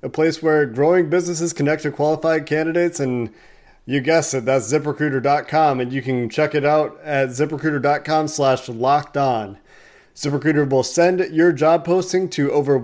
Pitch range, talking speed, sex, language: 135-165 Hz, 160 wpm, male, English